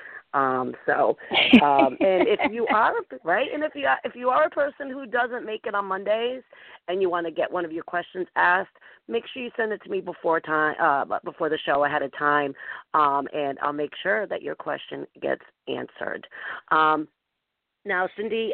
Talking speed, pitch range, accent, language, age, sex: 200 wpm, 155-215 Hz, American, English, 40-59, female